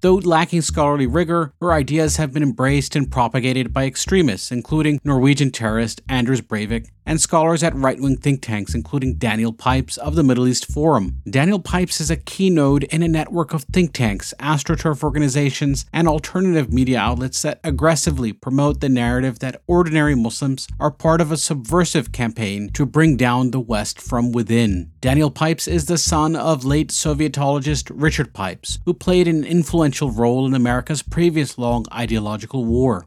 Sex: male